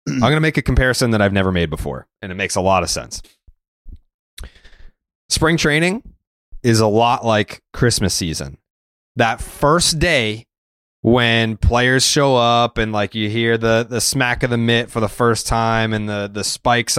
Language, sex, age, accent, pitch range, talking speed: English, male, 20-39, American, 95-115 Hz, 180 wpm